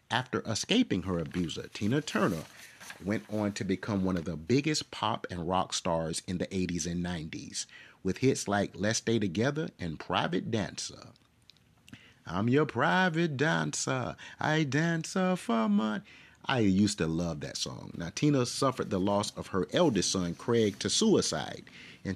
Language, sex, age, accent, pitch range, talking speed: English, male, 30-49, American, 95-125 Hz, 160 wpm